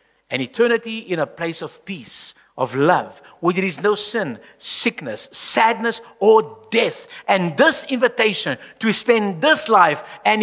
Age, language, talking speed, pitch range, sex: 50-69, English, 150 wpm, 125-200 Hz, male